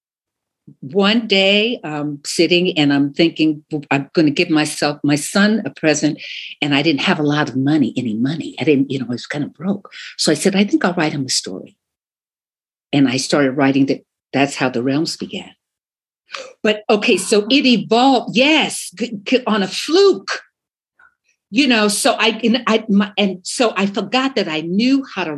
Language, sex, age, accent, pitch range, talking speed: English, female, 60-79, American, 160-245 Hz, 195 wpm